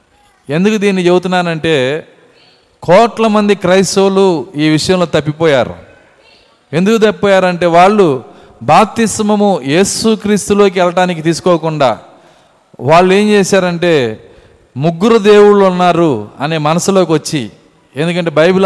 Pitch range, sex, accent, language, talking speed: 155-195 Hz, male, native, Telugu, 95 wpm